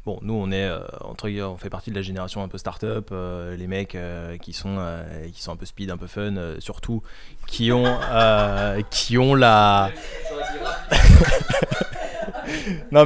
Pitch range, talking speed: 95-125 Hz, 180 wpm